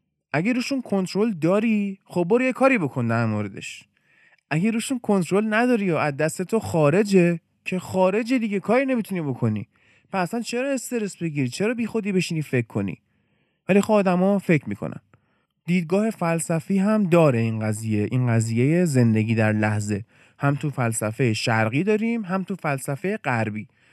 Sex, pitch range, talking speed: male, 120-205 Hz, 150 wpm